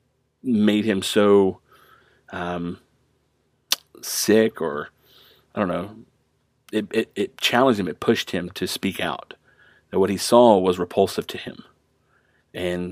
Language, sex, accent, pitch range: English, male, American, 90-105 Hz